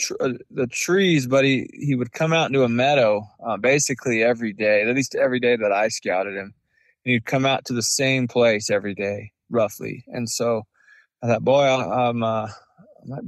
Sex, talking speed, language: male, 185 wpm, English